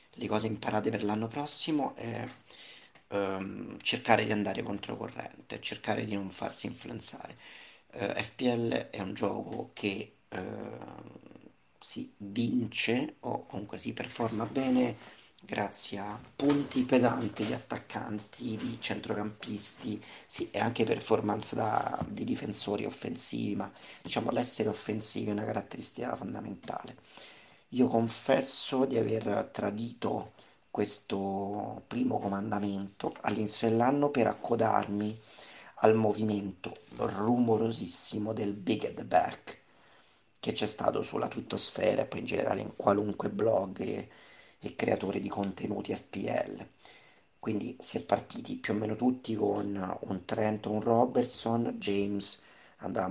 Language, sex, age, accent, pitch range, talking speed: Italian, male, 40-59, native, 100-120 Hz, 115 wpm